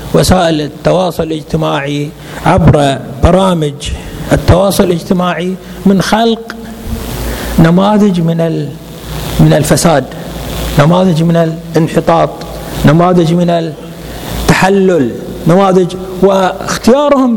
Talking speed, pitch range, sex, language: 70 wpm, 195-265 Hz, male, Arabic